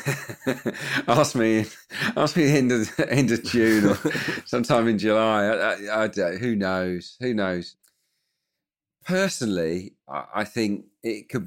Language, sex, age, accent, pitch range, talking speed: English, male, 40-59, British, 95-115 Hz, 135 wpm